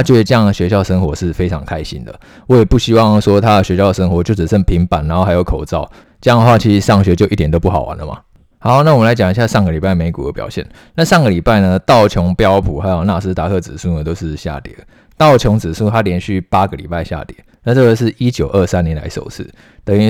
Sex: male